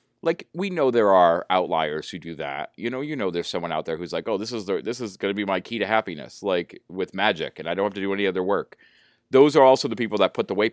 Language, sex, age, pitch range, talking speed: English, male, 30-49, 95-125 Hz, 285 wpm